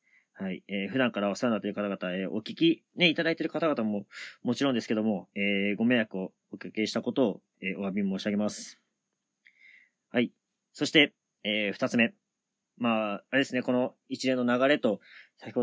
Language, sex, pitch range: Japanese, male, 100-150 Hz